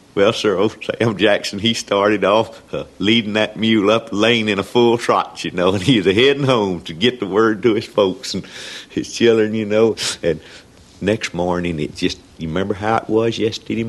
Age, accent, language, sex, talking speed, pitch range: 60-79, American, English, male, 210 wpm, 85-110 Hz